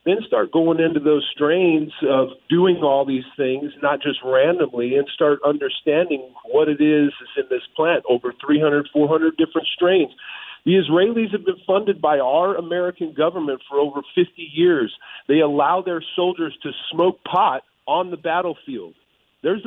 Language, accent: English, American